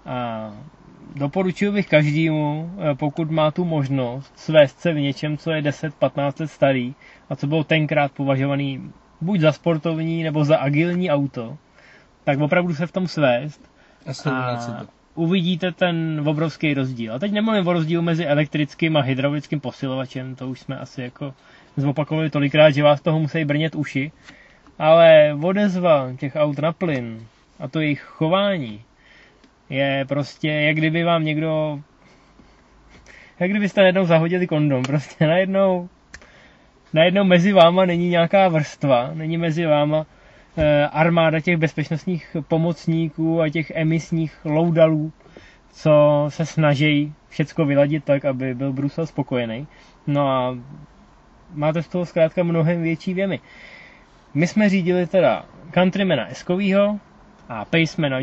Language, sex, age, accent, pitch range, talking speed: Czech, male, 20-39, native, 145-170 Hz, 135 wpm